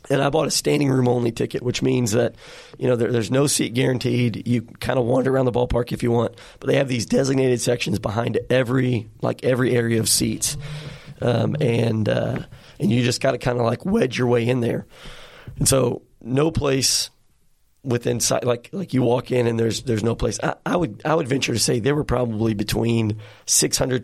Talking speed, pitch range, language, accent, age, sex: 210 wpm, 115-130 Hz, English, American, 30-49, male